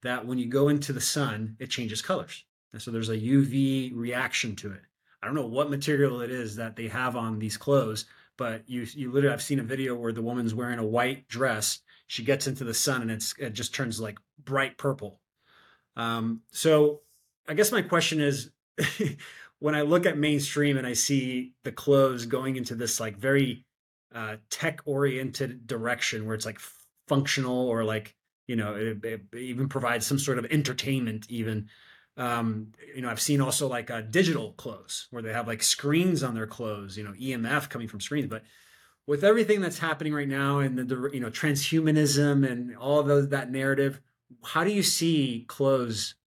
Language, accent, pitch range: English, American, 115-145 Hz